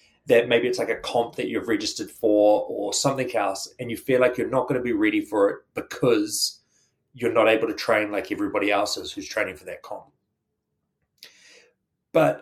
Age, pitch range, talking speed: 30-49, 120-155 Hz, 195 wpm